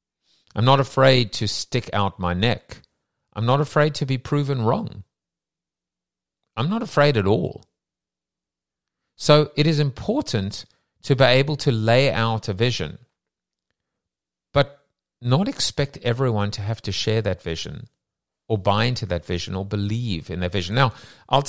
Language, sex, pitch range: English, male, 100-140 Hz